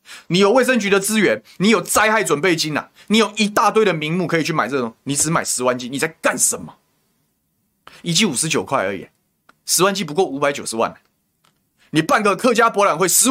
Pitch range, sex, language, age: 155-210 Hz, male, Chinese, 20-39